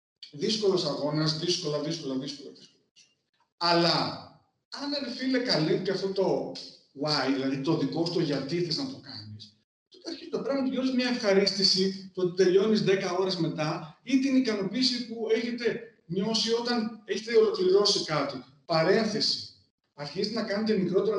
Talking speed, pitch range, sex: 140 wpm, 160-225 Hz, male